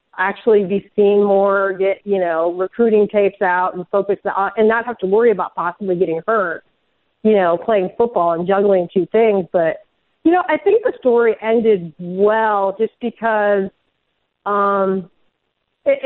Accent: American